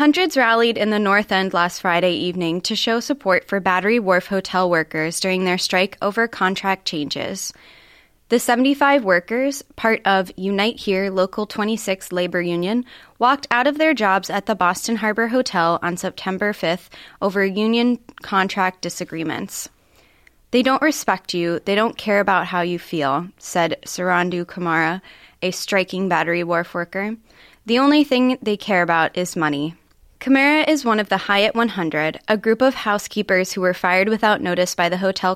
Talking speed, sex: 165 wpm, female